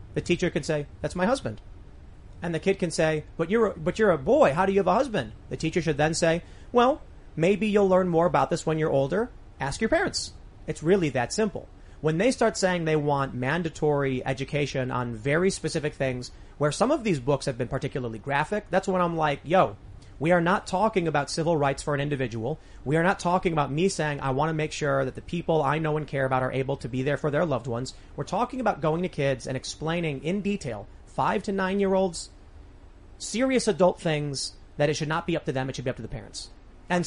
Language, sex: English, male